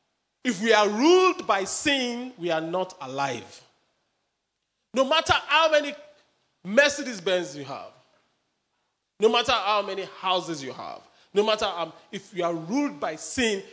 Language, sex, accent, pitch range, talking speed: English, male, Nigerian, 195-285 Hz, 145 wpm